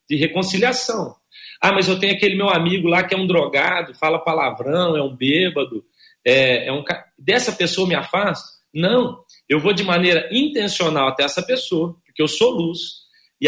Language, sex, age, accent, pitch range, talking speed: Portuguese, male, 40-59, Brazilian, 160-235 Hz, 185 wpm